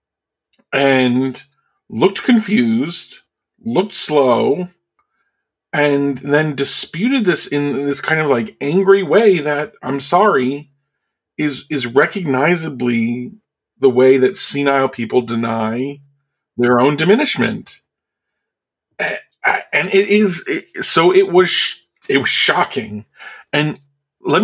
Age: 40-59